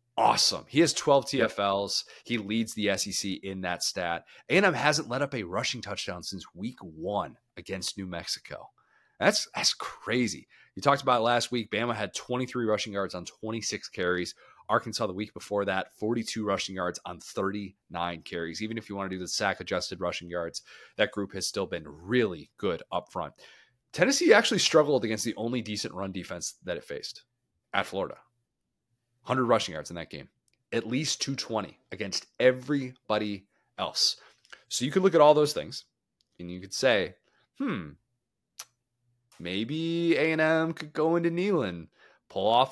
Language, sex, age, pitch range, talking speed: English, male, 30-49, 100-135 Hz, 165 wpm